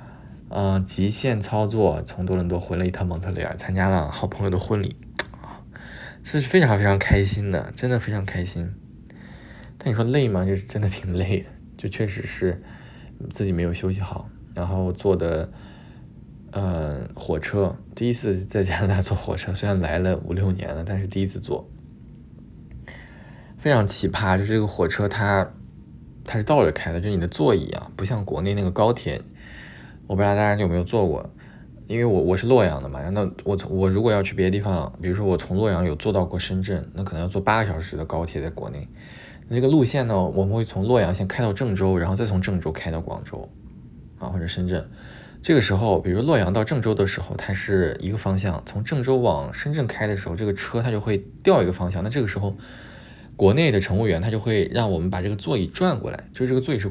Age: 20-39